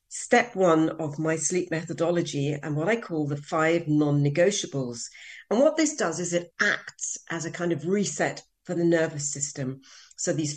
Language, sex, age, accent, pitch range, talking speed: English, female, 40-59, British, 155-200 Hz, 175 wpm